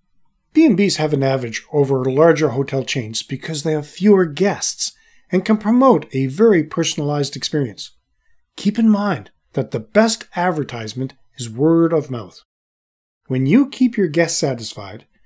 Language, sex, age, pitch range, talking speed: English, male, 40-59, 130-200 Hz, 145 wpm